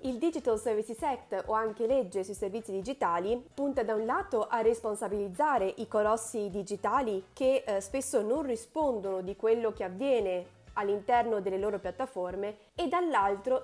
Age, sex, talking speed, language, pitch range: 20-39, female, 150 wpm, Italian, 200-260 Hz